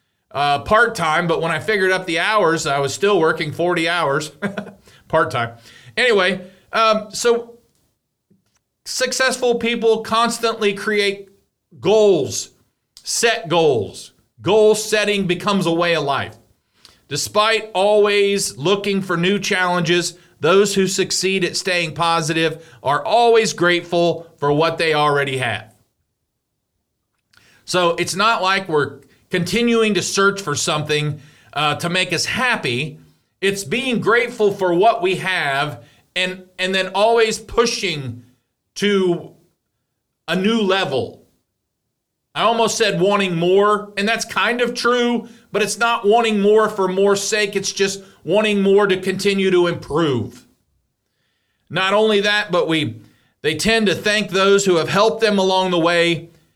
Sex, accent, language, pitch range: male, American, English, 165-210 Hz